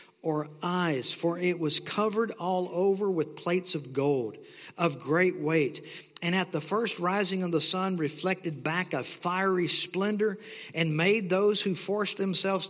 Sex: male